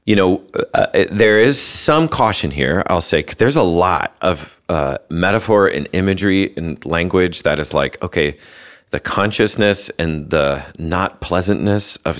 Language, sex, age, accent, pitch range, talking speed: English, male, 30-49, American, 75-95 Hz, 155 wpm